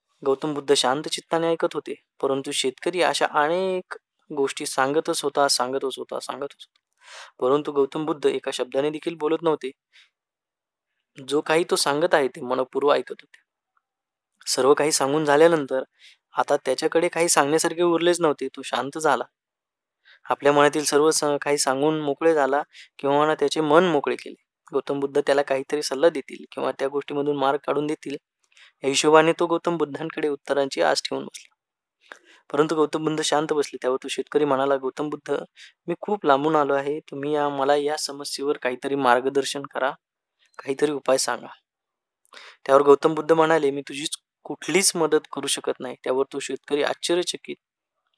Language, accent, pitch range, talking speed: Marathi, native, 140-155 Hz, 150 wpm